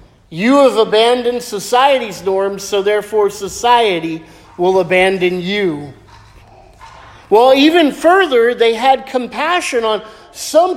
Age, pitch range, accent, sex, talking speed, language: 50-69, 190-240 Hz, American, male, 105 wpm, English